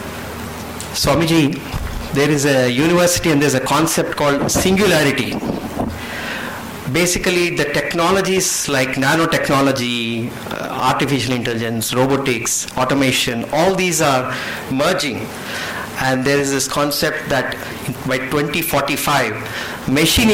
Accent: Indian